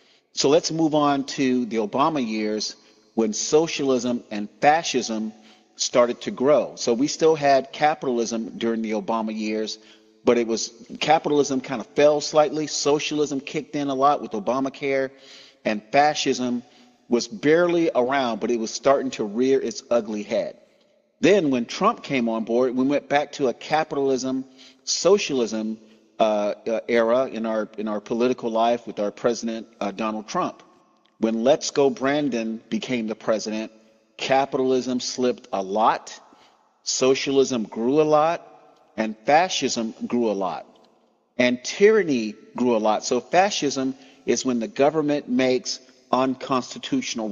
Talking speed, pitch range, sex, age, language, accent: 145 wpm, 115-145 Hz, male, 40-59, English, American